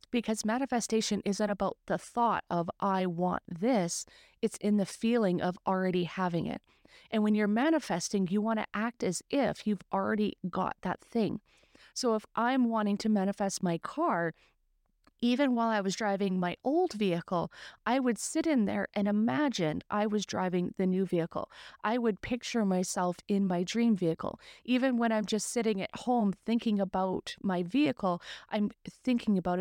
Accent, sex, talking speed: American, female, 170 wpm